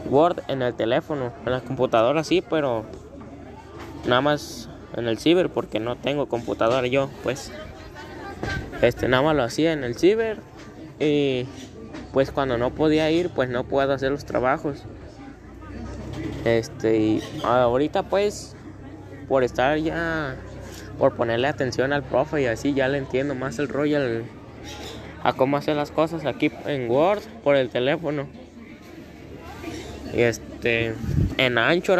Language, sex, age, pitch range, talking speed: Spanish, male, 10-29, 120-155 Hz, 140 wpm